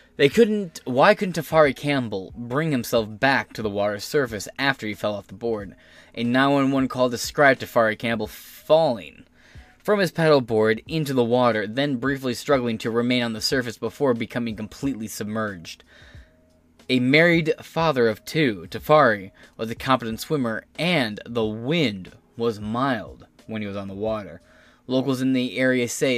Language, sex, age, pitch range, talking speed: English, male, 20-39, 105-130 Hz, 160 wpm